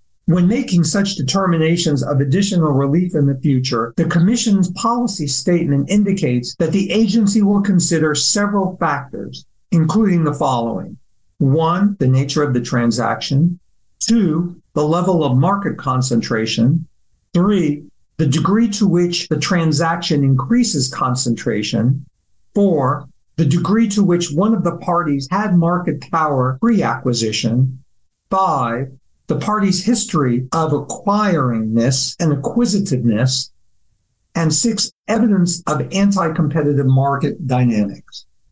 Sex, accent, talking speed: male, American, 115 wpm